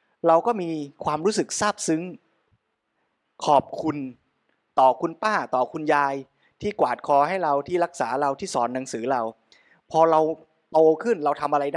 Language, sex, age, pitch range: Thai, male, 20-39, 140-180 Hz